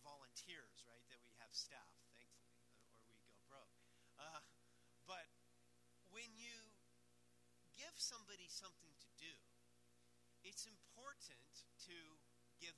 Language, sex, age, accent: English, male, 50-69, American